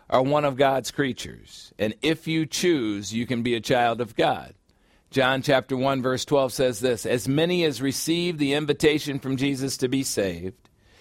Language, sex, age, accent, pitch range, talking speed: English, male, 50-69, American, 120-150 Hz, 185 wpm